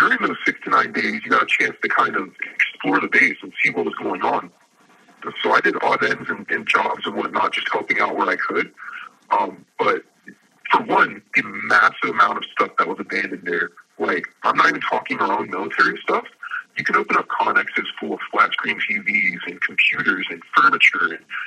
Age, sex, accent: 50-69, male, American